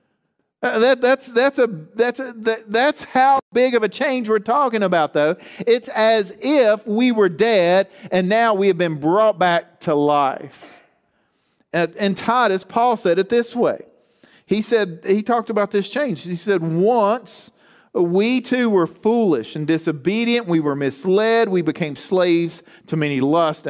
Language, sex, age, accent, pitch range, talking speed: English, male, 40-59, American, 165-225 Hz, 165 wpm